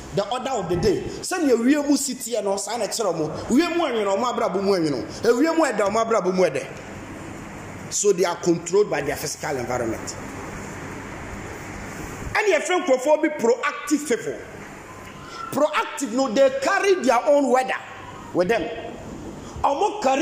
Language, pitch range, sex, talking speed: English, 220-305 Hz, male, 80 wpm